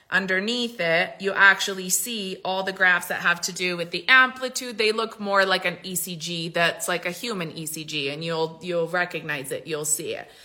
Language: English